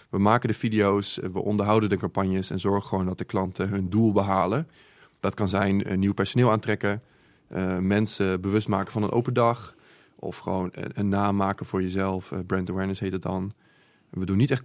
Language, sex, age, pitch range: Dutch, male, 20-39, 95-110 Hz